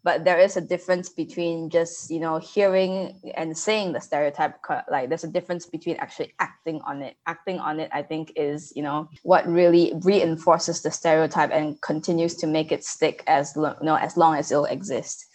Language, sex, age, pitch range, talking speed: English, female, 10-29, 155-180 Hz, 190 wpm